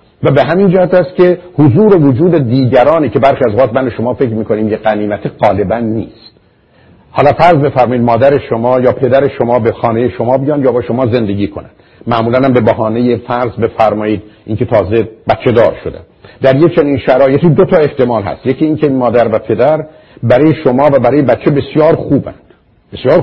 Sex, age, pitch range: male, 50-69, 110-145 Hz